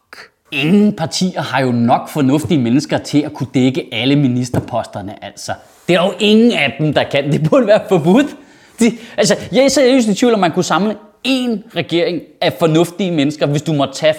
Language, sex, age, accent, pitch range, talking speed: Danish, male, 30-49, native, 135-205 Hz, 190 wpm